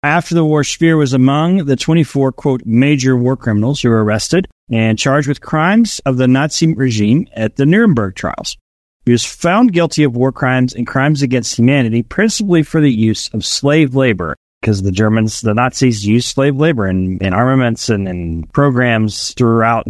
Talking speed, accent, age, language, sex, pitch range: 180 wpm, American, 40-59, English, male, 110-145 Hz